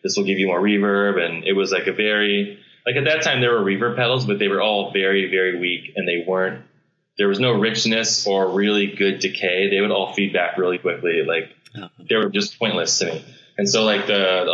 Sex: male